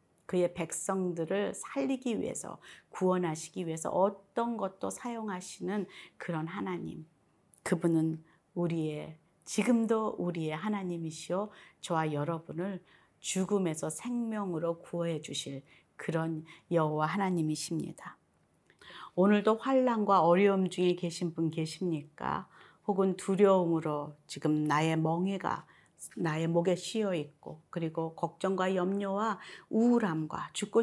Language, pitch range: Korean, 165-195 Hz